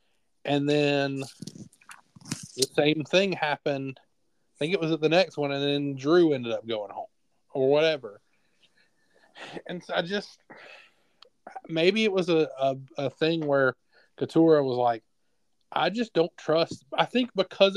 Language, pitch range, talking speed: English, 145-190 Hz, 150 wpm